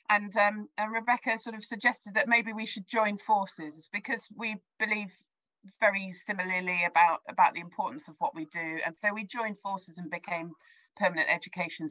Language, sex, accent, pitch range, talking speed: English, female, British, 170-220 Hz, 175 wpm